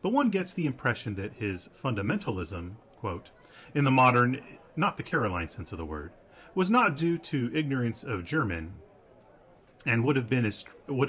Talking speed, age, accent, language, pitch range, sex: 150 wpm, 40-59, American, English, 100-135 Hz, male